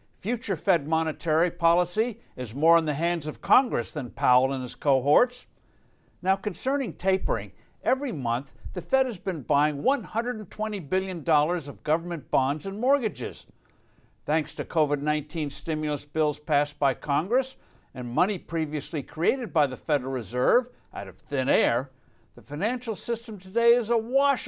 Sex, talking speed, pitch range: male, 145 wpm, 145-230 Hz